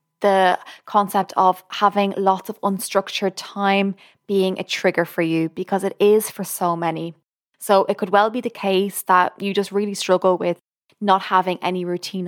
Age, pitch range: 20-39, 180-210 Hz